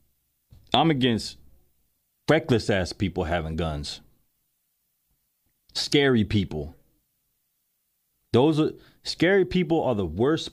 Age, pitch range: 30-49, 90-125 Hz